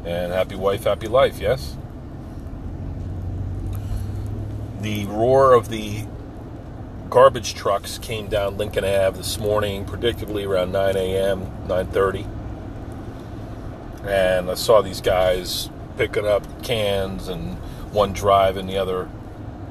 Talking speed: 110 wpm